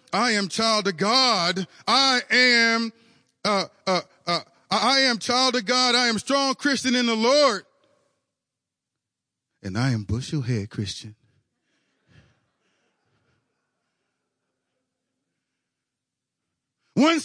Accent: American